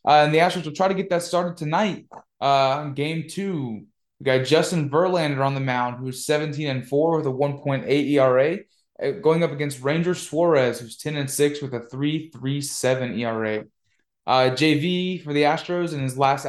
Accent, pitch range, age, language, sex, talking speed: American, 130-160 Hz, 20-39, English, male, 180 wpm